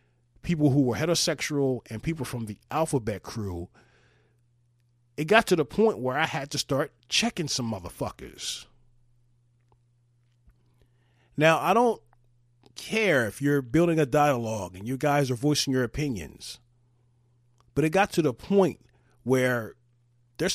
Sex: male